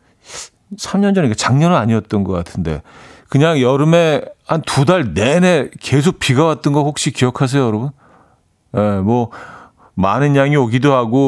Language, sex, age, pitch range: Korean, male, 40-59, 100-140 Hz